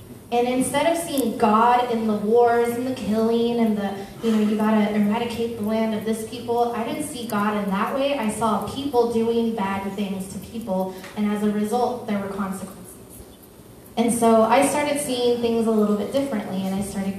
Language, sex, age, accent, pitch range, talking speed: English, female, 20-39, American, 205-235 Hz, 205 wpm